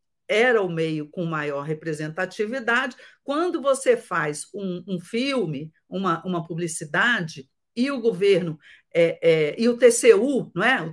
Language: Portuguese